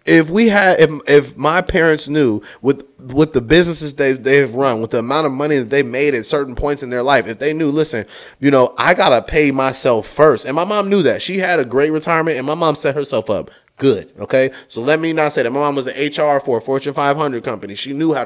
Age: 20-39